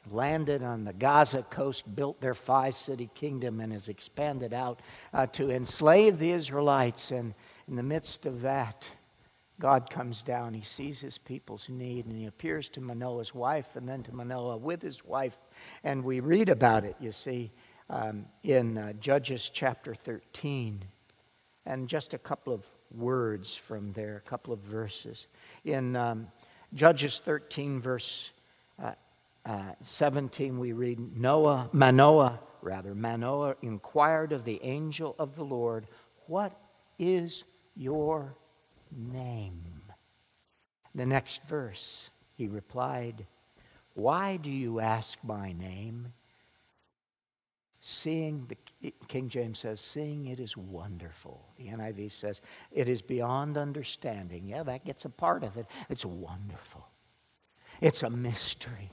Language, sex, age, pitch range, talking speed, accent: English, male, 60-79, 110-140 Hz, 135 wpm, American